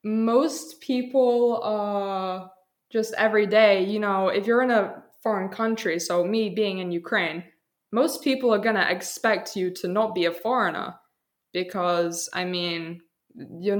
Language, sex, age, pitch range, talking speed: English, female, 20-39, 190-230 Hz, 150 wpm